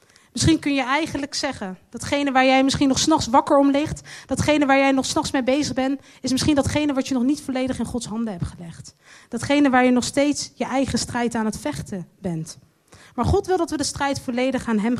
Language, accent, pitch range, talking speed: Dutch, Dutch, 225-300 Hz, 230 wpm